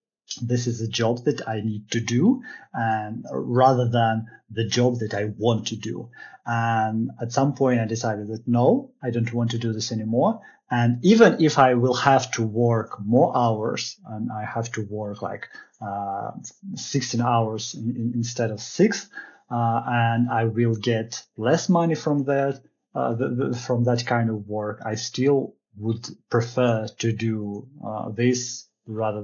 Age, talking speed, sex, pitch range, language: 30-49, 170 wpm, male, 110-125 Hz, English